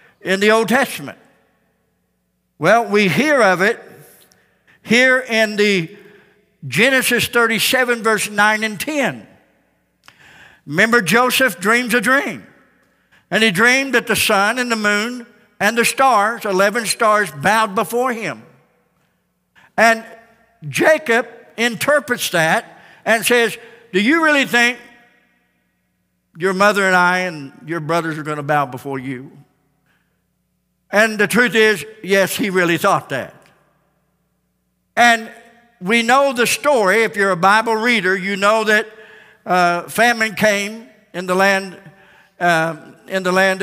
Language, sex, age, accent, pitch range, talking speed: English, male, 60-79, American, 180-225 Hz, 130 wpm